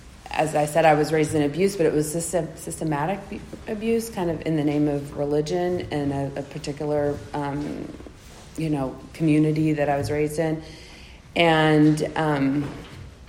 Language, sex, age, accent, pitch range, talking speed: English, female, 30-49, American, 140-165 Hz, 155 wpm